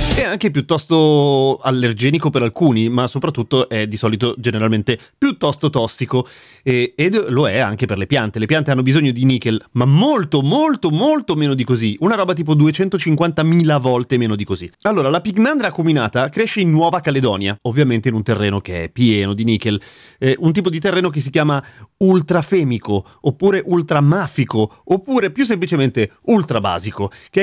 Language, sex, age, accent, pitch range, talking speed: Italian, male, 30-49, native, 110-155 Hz, 165 wpm